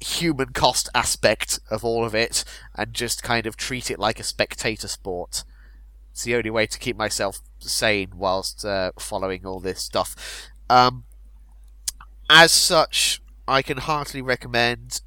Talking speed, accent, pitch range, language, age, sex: 150 wpm, British, 95-120 Hz, English, 30-49, male